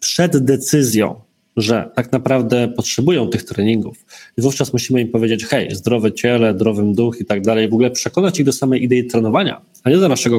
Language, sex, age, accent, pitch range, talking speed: Polish, male, 20-39, native, 115-135 Hz, 190 wpm